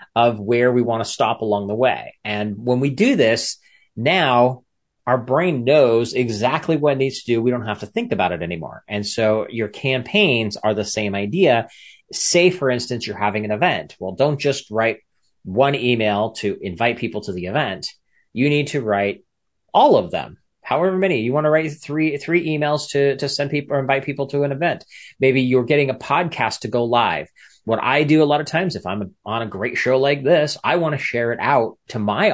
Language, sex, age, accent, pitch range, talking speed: English, male, 30-49, American, 115-165 Hz, 215 wpm